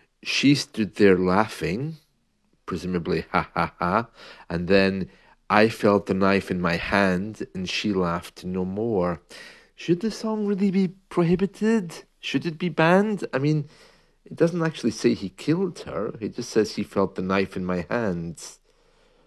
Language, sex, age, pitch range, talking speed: English, male, 40-59, 90-145 Hz, 160 wpm